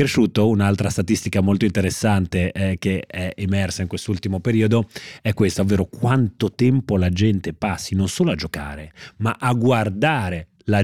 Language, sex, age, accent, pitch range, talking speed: Italian, male, 30-49, native, 95-115 Hz, 150 wpm